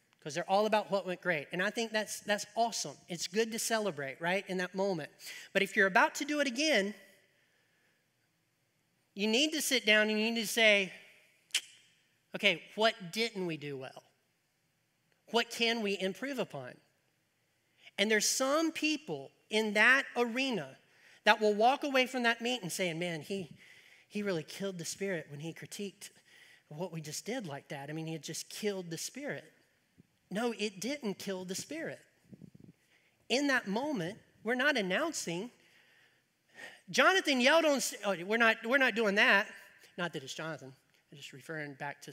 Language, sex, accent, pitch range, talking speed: English, male, American, 175-240 Hz, 170 wpm